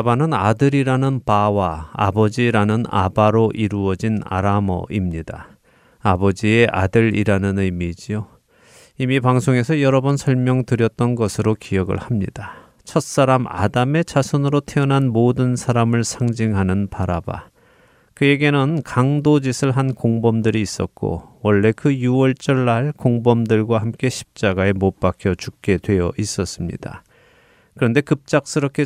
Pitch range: 100-130 Hz